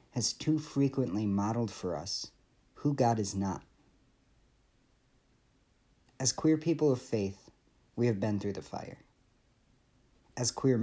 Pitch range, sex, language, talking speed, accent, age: 95-125 Hz, male, English, 125 wpm, American, 50-69